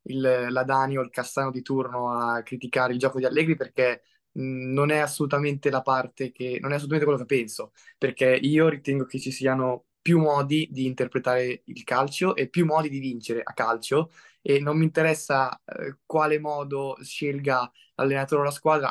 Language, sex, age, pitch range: Italian, male, 20-39, 130-150 Hz